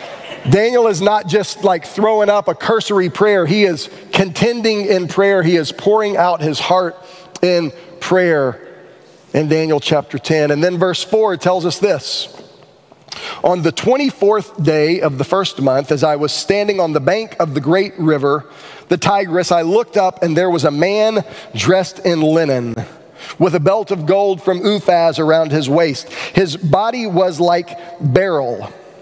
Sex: male